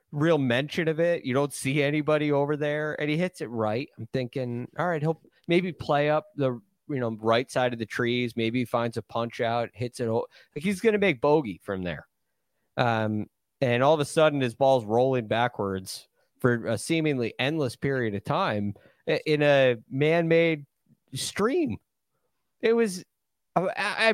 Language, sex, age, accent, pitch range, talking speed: English, male, 30-49, American, 115-150 Hz, 175 wpm